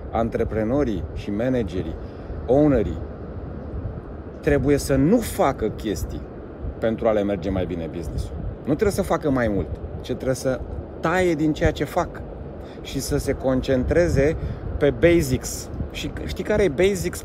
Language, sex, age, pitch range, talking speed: Romanian, male, 30-49, 90-150 Hz, 145 wpm